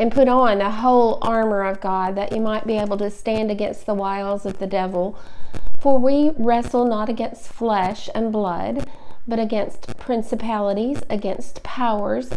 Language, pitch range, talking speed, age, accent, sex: English, 210-240 Hz, 165 wpm, 40-59, American, female